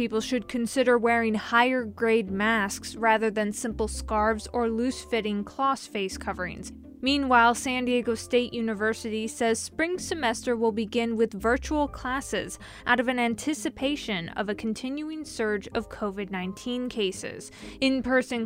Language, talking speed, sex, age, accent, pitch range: English, 140 wpm, female, 20-39, American, 215-255 Hz